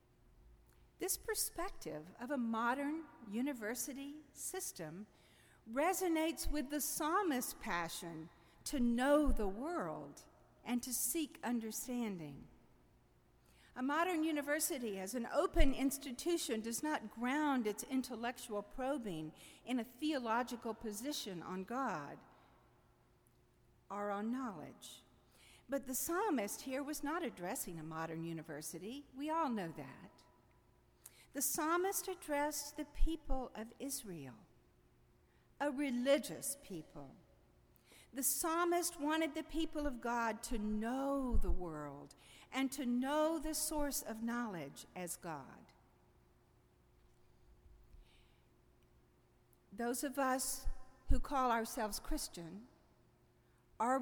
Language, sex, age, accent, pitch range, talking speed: English, female, 50-69, American, 175-290 Hz, 105 wpm